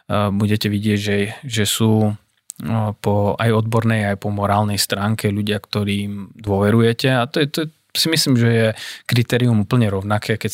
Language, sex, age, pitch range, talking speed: Slovak, male, 20-39, 105-115 Hz, 155 wpm